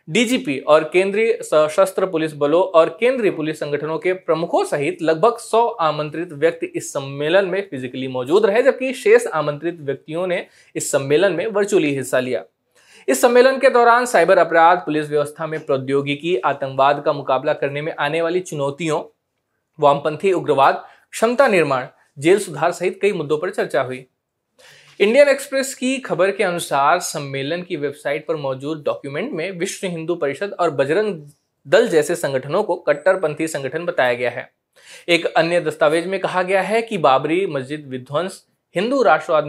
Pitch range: 145-190 Hz